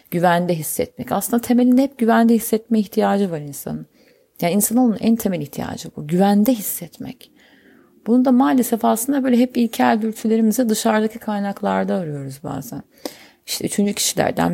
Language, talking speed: Turkish, 135 wpm